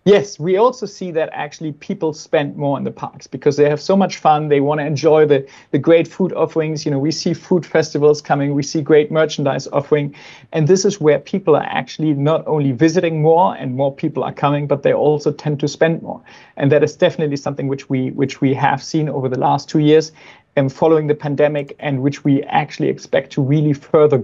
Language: English